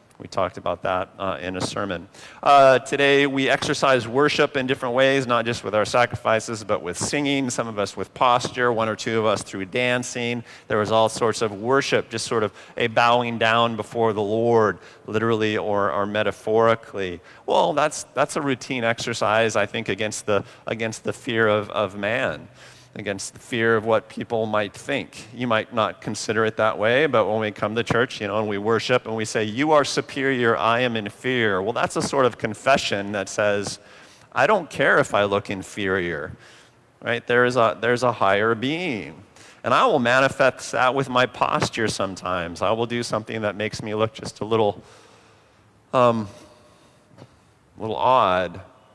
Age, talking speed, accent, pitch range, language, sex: 40-59, 190 wpm, American, 105-125 Hz, English, male